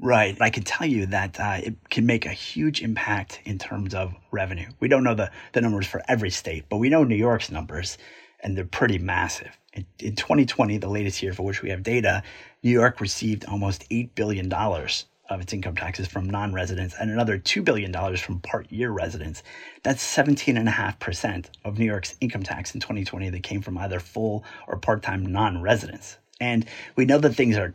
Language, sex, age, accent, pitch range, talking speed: English, male, 30-49, American, 95-115 Hz, 205 wpm